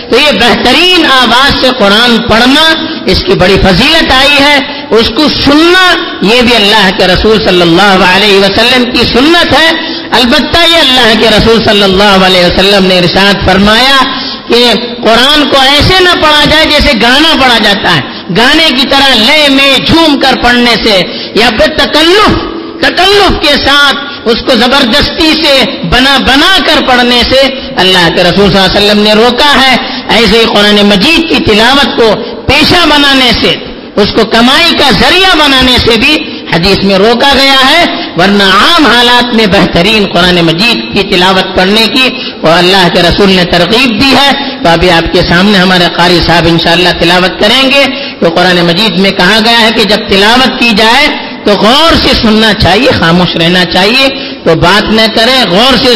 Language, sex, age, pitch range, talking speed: Urdu, female, 50-69, 200-275 Hz, 175 wpm